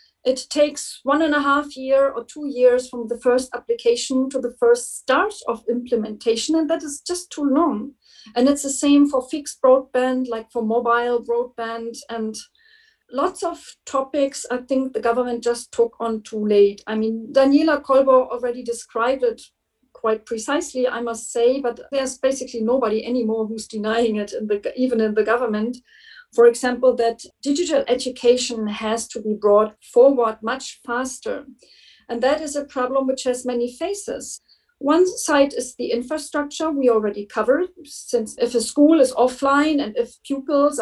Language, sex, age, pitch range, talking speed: English, female, 40-59, 235-285 Hz, 165 wpm